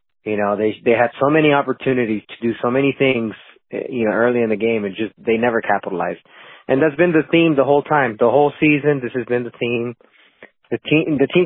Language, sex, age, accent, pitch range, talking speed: English, male, 30-49, American, 110-140 Hz, 230 wpm